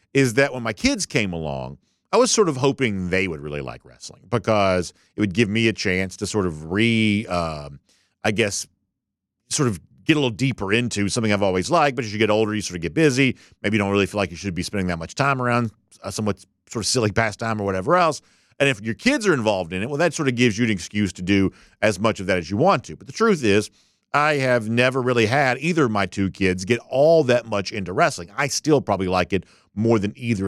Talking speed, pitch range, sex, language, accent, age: 255 wpm, 95-135 Hz, male, English, American, 50-69